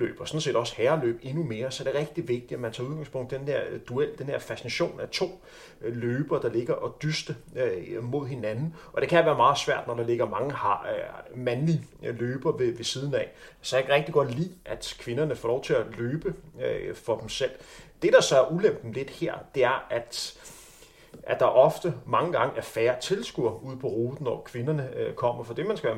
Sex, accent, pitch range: male, native, 125-180 Hz